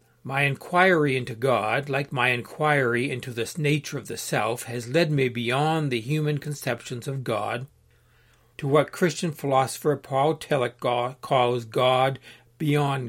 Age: 60-79